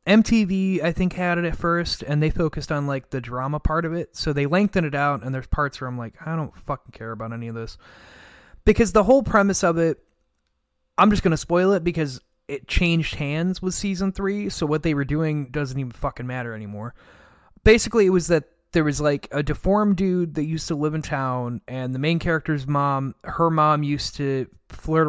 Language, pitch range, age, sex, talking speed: English, 130-170 Hz, 20-39, male, 220 wpm